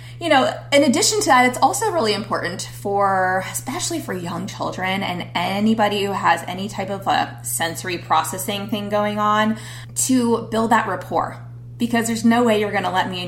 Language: English